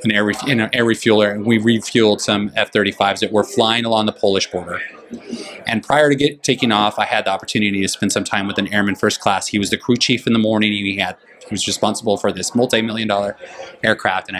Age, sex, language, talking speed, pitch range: 30-49, male, English, 215 wpm, 100-115 Hz